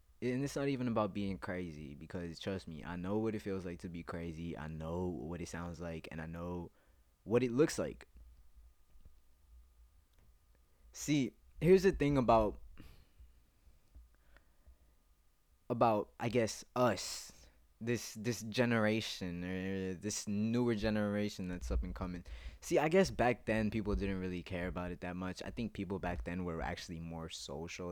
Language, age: English, 20-39